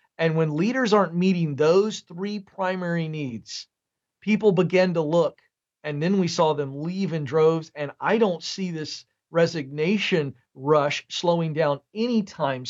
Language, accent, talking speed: English, American, 145 wpm